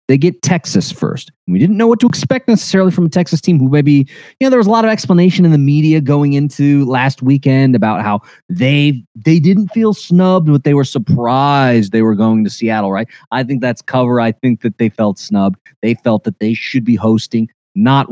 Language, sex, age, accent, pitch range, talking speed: English, male, 30-49, American, 115-170 Hz, 220 wpm